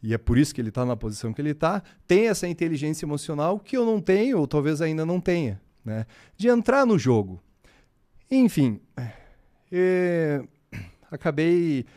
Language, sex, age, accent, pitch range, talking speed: Portuguese, male, 30-49, Brazilian, 115-185 Hz, 165 wpm